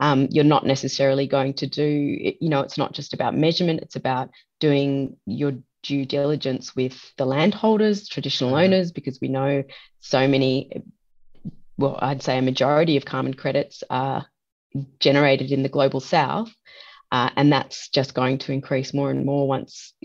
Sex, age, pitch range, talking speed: female, 30-49, 135-150 Hz, 165 wpm